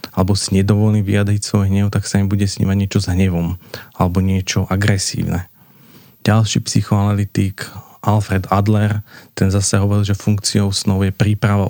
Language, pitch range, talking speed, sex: Slovak, 95-105 Hz, 150 wpm, male